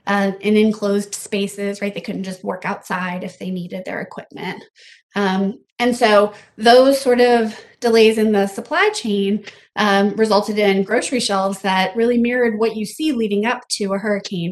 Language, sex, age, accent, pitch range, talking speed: English, female, 20-39, American, 195-235 Hz, 175 wpm